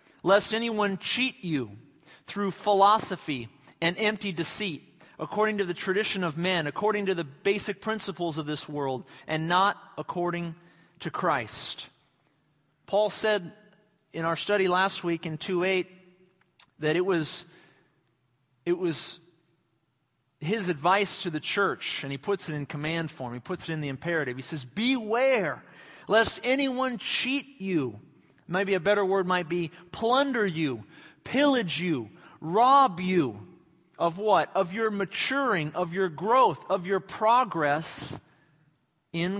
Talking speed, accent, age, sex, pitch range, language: 135 wpm, American, 40-59, male, 160-205 Hz, English